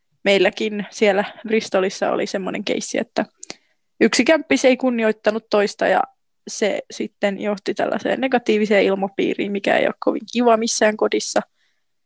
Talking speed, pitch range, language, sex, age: 130 wpm, 200-235 Hz, Finnish, female, 20-39